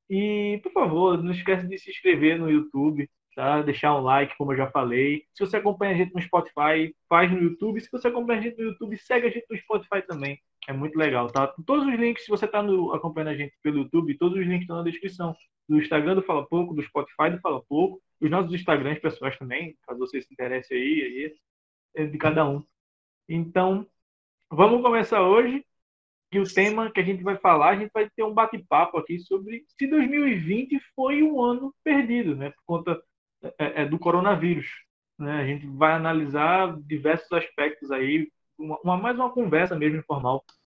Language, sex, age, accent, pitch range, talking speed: Portuguese, male, 20-39, Brazilian, 150-215 Hz, 200 wpm